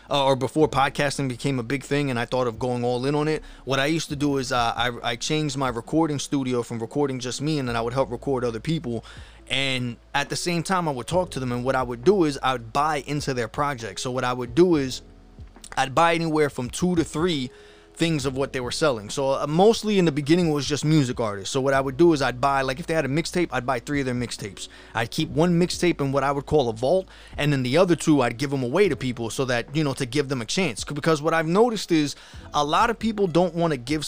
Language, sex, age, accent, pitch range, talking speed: English, male, 20-39, American, 130-170 Hz, 275 wpm